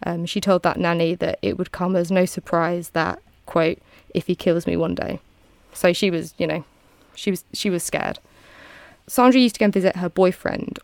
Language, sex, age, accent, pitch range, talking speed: English, female, 20-39, British, 175-195 Hz, 210 wpm